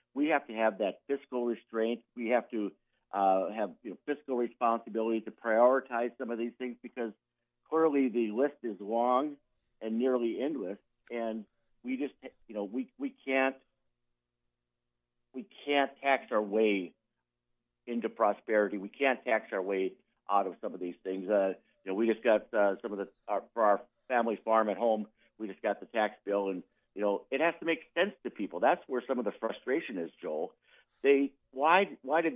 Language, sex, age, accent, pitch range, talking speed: English, male, 50-69, American, 105-130 Hz, 190 wpm